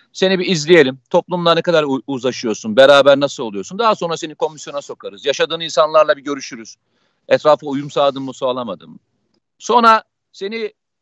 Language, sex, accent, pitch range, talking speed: Turkish, male, native, 140-200 Hz, 145 wpm